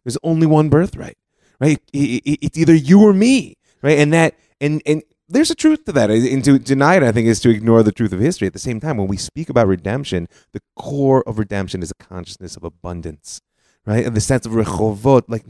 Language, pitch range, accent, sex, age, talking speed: English, 95-140 Hz, American, male, 30-49, 225 wpm